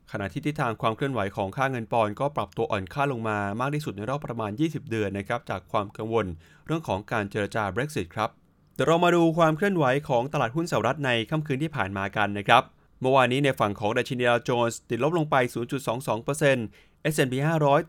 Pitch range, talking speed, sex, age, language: 110-145 Hz, 35 wpm, male, 20-39, English